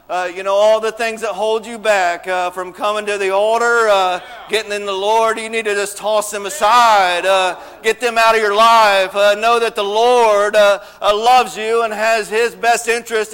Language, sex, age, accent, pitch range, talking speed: English, male, 50-69, American, 225-265 Hz, 215 wpm